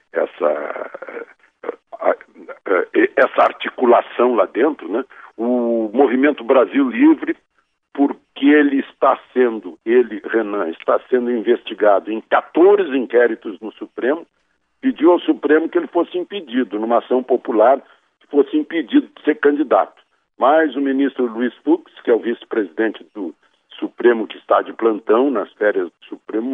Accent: Brazilian